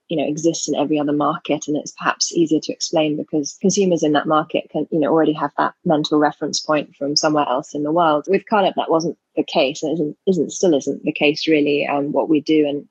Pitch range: 145-165 Hz